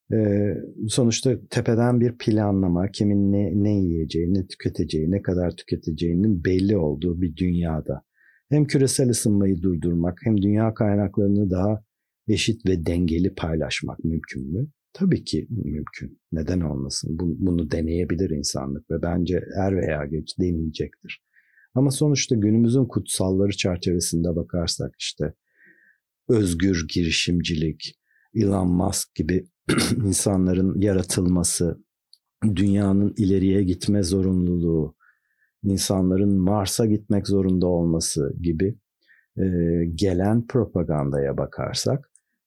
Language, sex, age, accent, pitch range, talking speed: Turkish, male, 50-69, native, 85-105 Hz, 100 wpm